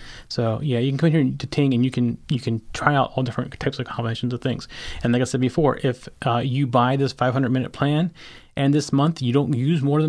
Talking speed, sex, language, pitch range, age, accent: 255 wpm, male, English, 125-150 Hz, 30-49, American